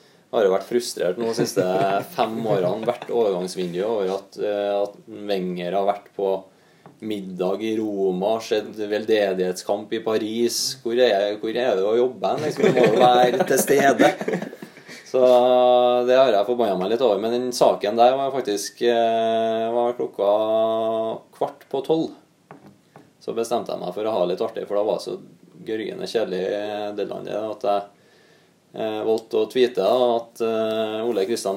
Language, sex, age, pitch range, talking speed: English, male, 20-39, 105-120 Hz, 160 wpm